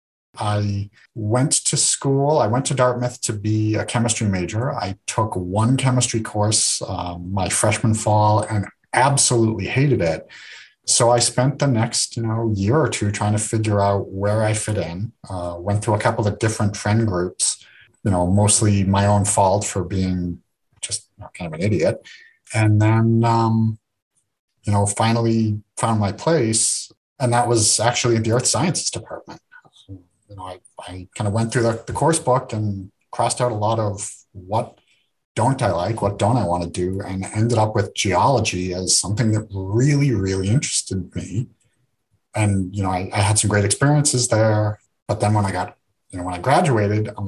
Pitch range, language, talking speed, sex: 100-120 Hz, English, 185 wpm, male